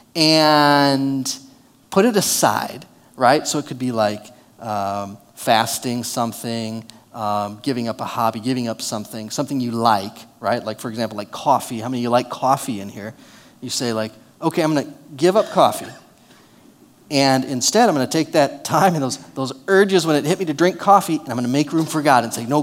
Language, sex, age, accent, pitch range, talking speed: English, male, 30-49, American, 120-185 Hz, 200 wpm